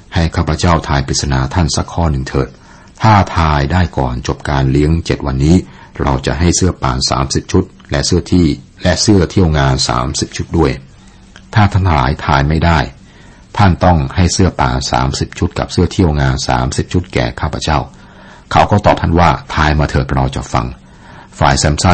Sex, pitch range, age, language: male, 65-85 Hz, 60-79, Thai